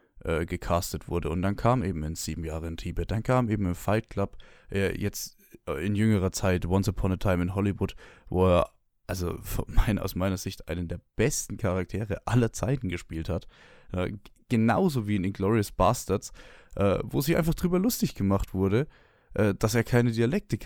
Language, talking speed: German, 175 wpm